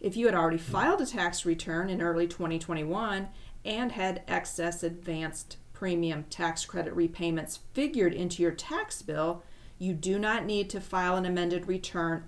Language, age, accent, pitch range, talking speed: English, 40-59, American, 165-195 Hz, 160 wpm